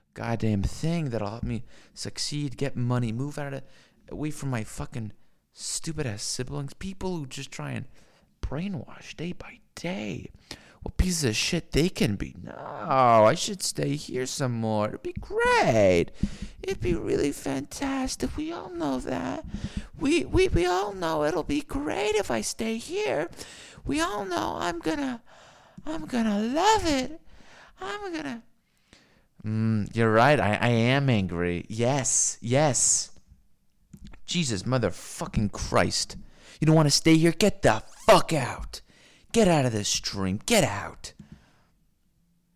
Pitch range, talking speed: 110-180 Hz, 145 wpm